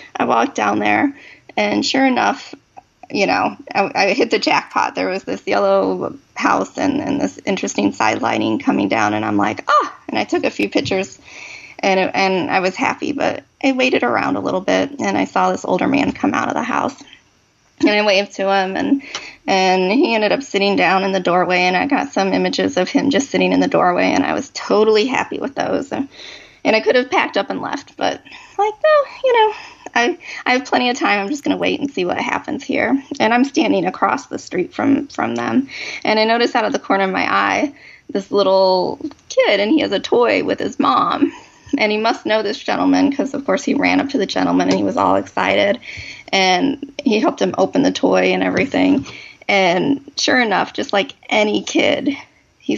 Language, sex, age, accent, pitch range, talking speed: English, female, 30-49, American, 195-295 Hz, 220 wpm